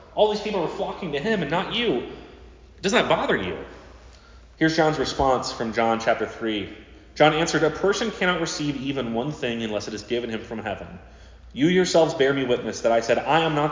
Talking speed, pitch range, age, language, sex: 210 wpm, 85-135 Hz, 30-49, English, male